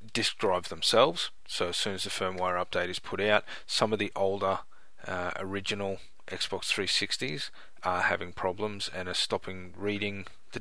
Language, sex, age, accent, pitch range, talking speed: English, male, 20-39, Australian, 90-100 Hz, 165 wpm